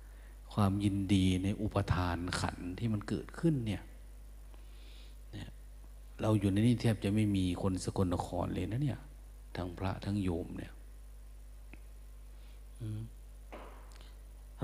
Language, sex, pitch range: Thai, male, 85-110 Hz